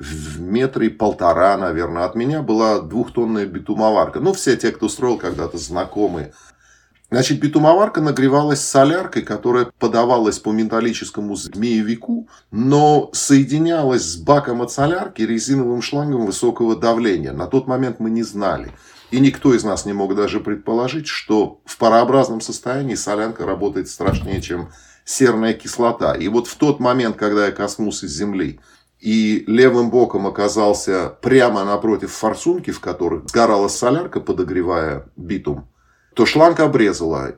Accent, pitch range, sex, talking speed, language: native, 105-135 Hz, male, 135 wpm, Russian